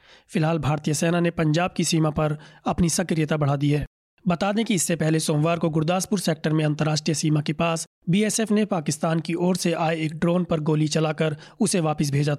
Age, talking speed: 30-49, 205 wpm